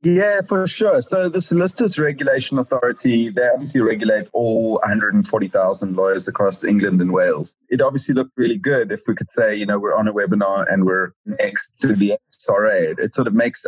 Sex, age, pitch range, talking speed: male, 30-49, 100-150 Hz, 190 wpm